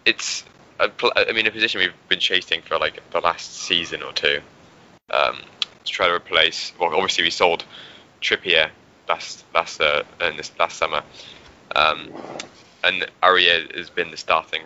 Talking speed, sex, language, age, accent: 145 wpm, male, English, 10-29, British